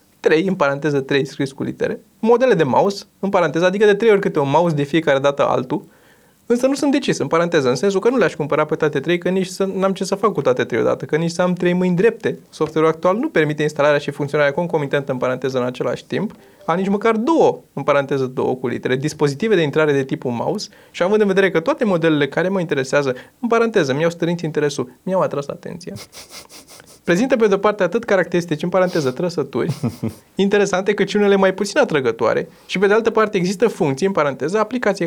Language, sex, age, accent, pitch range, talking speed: Romanian, male, 20-39, native, 150-205 Hz, 220 wpm